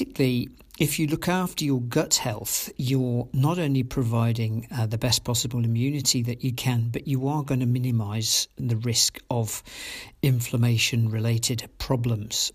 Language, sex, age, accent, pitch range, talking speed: English, male, 50-69, British, 115-135 Hz, 150 wpm